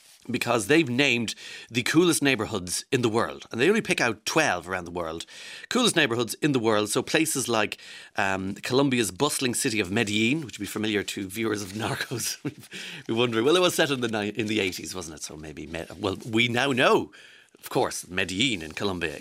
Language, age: English, 40-59